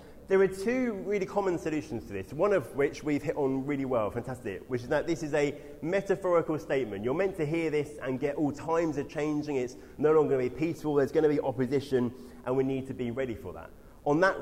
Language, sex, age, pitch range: English, male, 30-49, 115-150 Hz